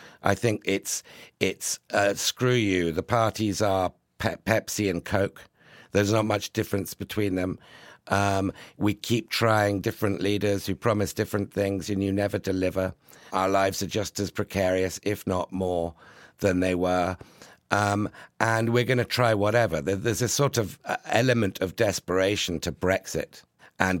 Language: English